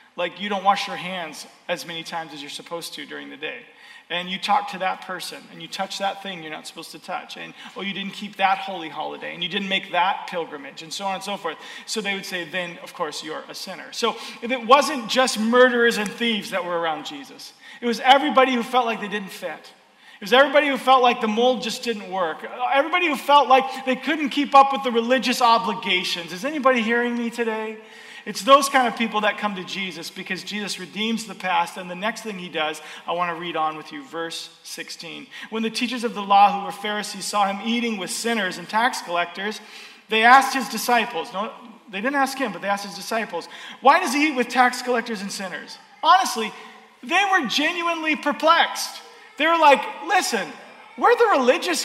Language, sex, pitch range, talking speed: English, male, 195-265 Hz, 220 wpm